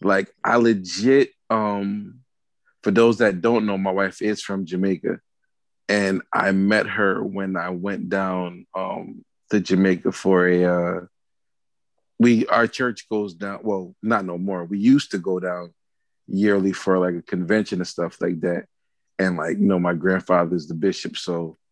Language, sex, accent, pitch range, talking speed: English, male, American, 90-110 Hz, 165 wpm